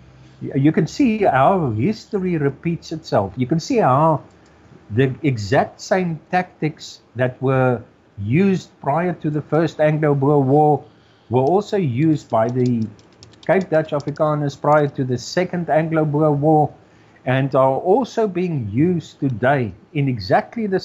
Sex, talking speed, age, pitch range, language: male, 135 wpm, 50-69, 125-160 Hz, English